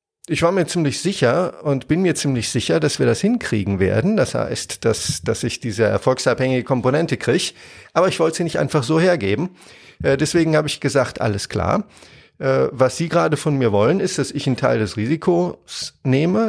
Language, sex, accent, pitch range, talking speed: German, male, German, 110-155 Hz, 190 wpm